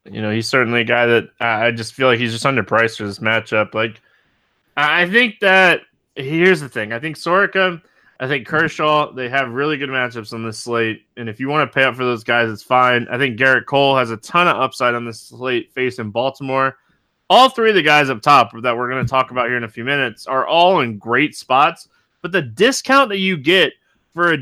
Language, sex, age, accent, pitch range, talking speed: English, male, 20-39, American, 125-175 Hz, 240 wpm